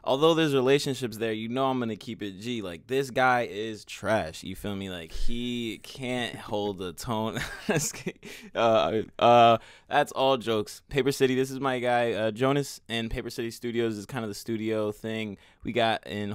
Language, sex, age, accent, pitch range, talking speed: English, male, 20-39, American, 95-120 Hz, 190 wpm